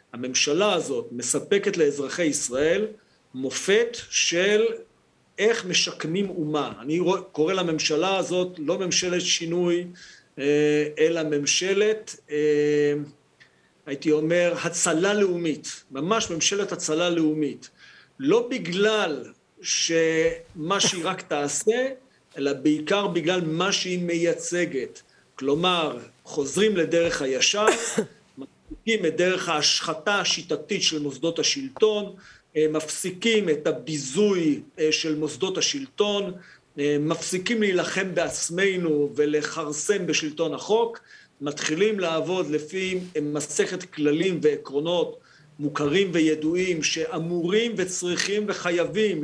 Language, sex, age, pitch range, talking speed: Hebrew, male, 50-69, 150-195 Hz, 90 wpm